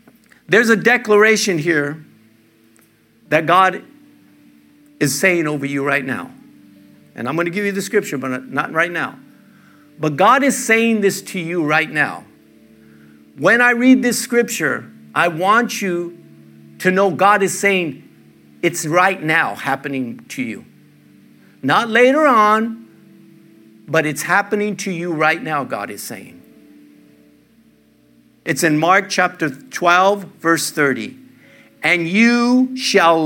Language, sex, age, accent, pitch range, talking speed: English, male, 50-69, American, 120-190 Hz, 135 wpm